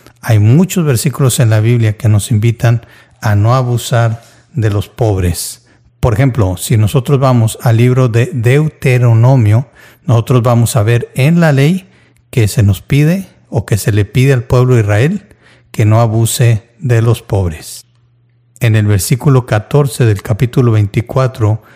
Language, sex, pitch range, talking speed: Spanish, male, 115-140 Hz, 155 wpm